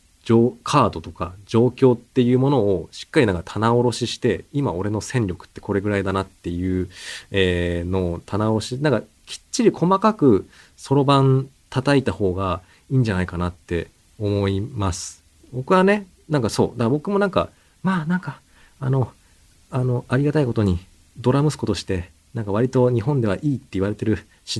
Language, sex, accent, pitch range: Japanese, male, native, 95-130 Hz